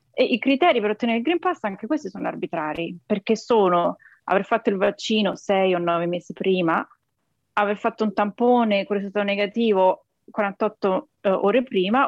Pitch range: 195-250 Hz